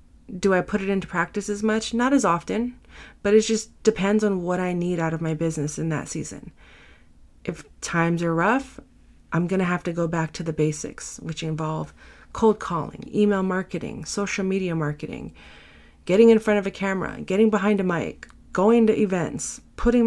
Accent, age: American, 30-49